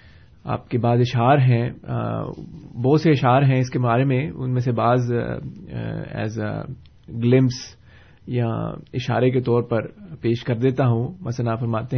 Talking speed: 145 wpm